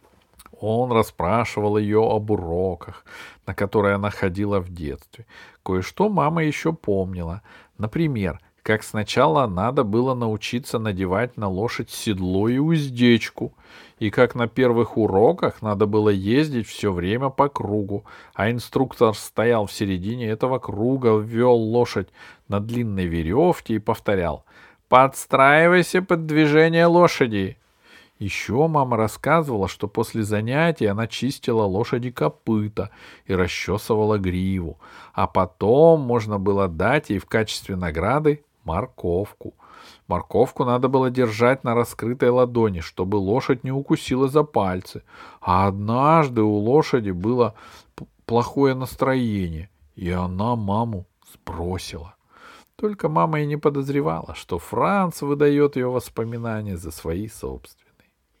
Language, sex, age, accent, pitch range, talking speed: Russian, male, 40-59, native, 100-130 Hz, 120 wpm